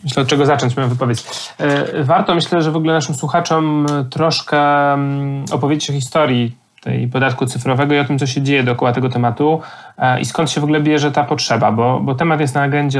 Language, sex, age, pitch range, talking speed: Polish, male, 30-49, 135-155 Hz, 200 wpm